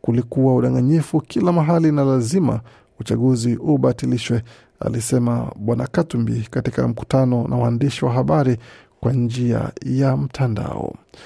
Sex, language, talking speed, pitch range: male, Swahili, 105 wpm, 120-145 Hz